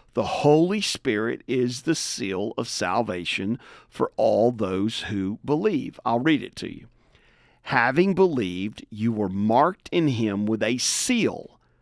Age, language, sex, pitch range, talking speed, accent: 50-69, English, male, 110-175 Hz, 140 wpm, American